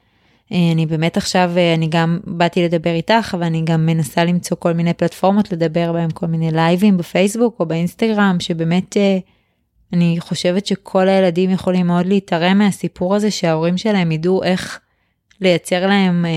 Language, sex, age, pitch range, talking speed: Hebrew, female, 20-39, 170-200 Hz, 145 wpm